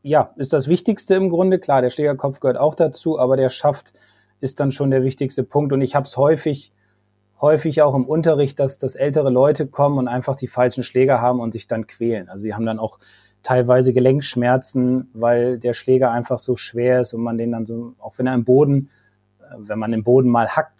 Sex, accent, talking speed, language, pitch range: male, German, 215 wpm, German, 115-150 Hz